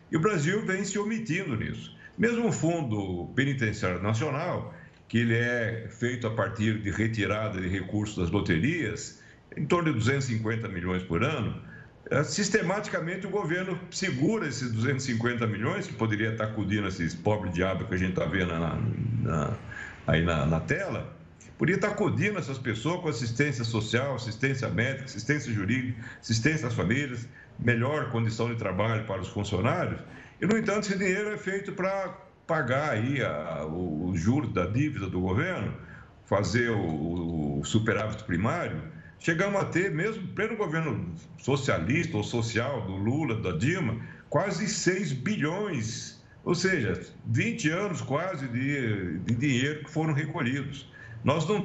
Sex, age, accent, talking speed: male, 60-79, Brazilian, 155 wpm